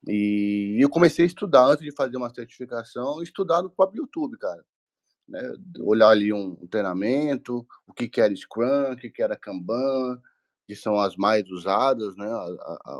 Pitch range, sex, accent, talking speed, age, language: 95-130 Hz, male, Brazilian, 180 wpm, 20-39, Portuguese